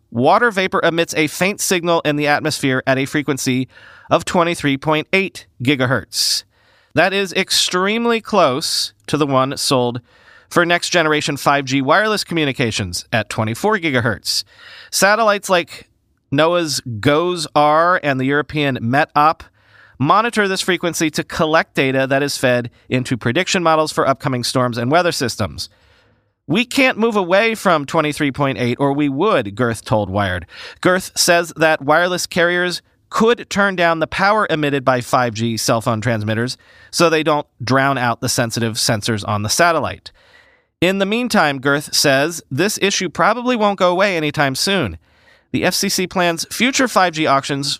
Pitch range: 125-180 Hz